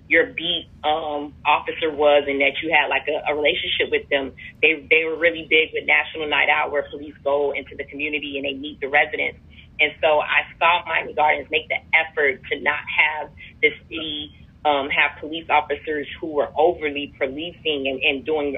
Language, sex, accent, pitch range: English, female, American, 145-170 Hz